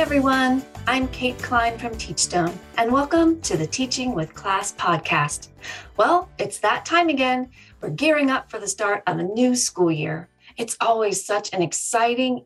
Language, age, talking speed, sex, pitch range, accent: English, 40-59, 175 wpm, female, 185-255 Hz, American